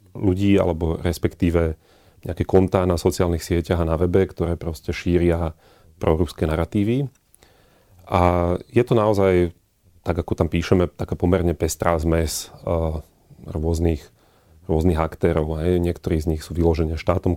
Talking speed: 135 wpm